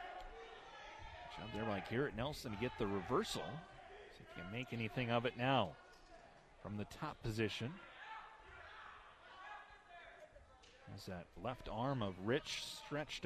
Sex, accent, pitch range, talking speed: male, American, 110-140 Hz, 120 wpm